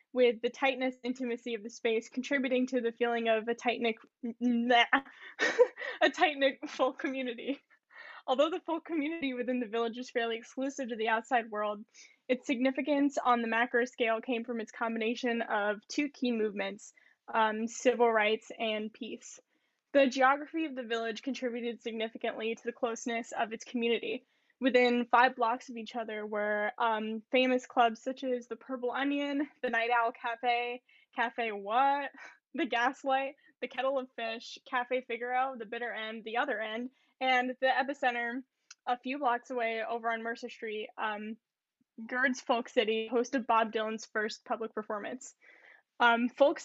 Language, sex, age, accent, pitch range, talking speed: English, female, 10-29, American, 230-260 Hz, 155 wpm